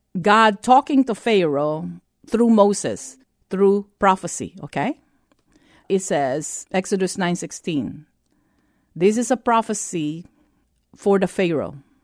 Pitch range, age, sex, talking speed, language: 175-240 Hz, 50-69, female, 100 wpm, English